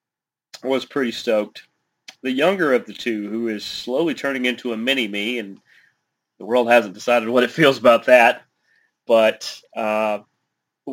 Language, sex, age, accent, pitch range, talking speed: English, male, 30-49, American, 110-130 Hz, 155 wpm